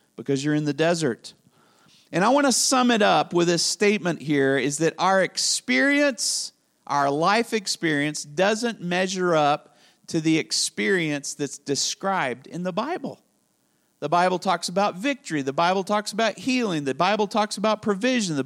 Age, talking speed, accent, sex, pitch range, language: 40-59, 165 wpm, American, male, 145-210 Hz, English